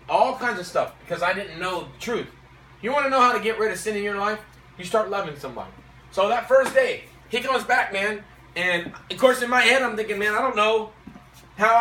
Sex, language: male, English